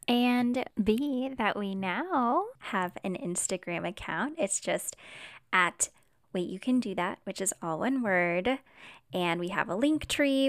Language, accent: English, American